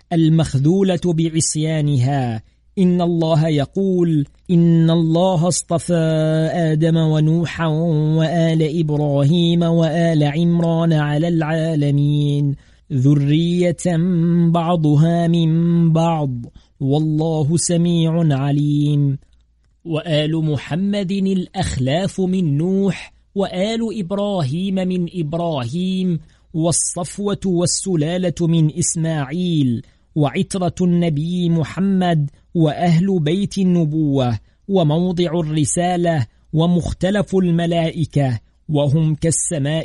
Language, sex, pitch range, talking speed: Arabic, male, 150-175 Hz, 70 wpm